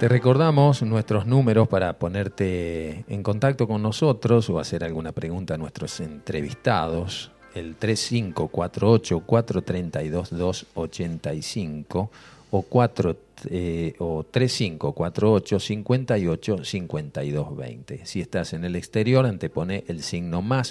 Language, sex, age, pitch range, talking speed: Spanish, male, 40-59, 85-115 Hz, 95 wpm